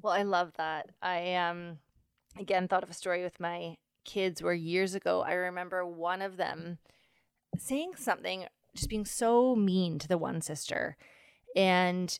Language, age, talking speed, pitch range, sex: English, 20-39, 160 wpm, 175-205 Hz, female